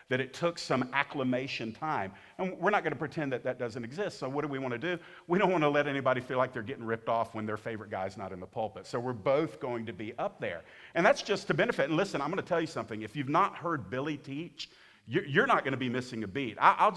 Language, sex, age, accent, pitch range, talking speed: English, male, 50-69, American, 120-155 Hz, 280 wpm